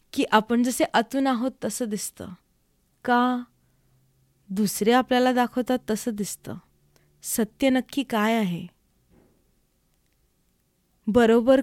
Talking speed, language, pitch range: 95 wpm, Marathi, 185-245 Hz